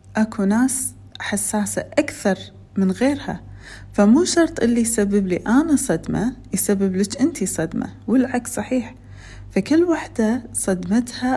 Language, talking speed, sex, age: Arabic, 115 wpm, female, 30-49